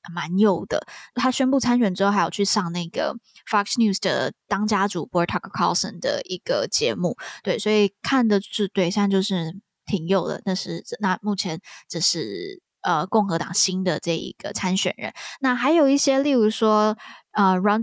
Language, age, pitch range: Chinese, 20-39, 185-235 Hz